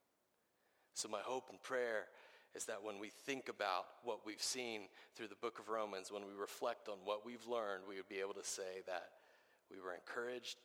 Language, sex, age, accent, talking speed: English, male, 30-49, American, 205 wpm